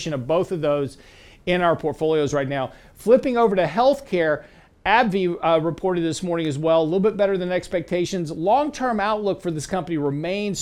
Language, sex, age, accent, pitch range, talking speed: English, male, 50-69, American, 150-190 Hz, 180 wpm